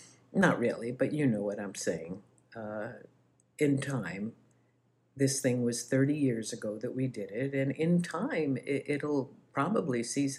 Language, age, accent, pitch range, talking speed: English, 60-79, American, 115-140 Hz, 160 wpm